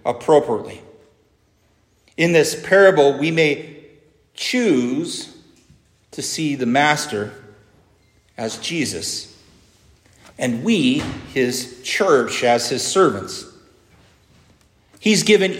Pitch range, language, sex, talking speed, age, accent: 105-140 Hz, English, male, 85 wpm, 40-59, American